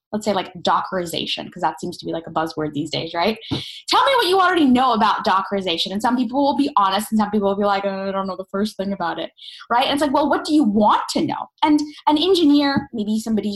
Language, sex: English, female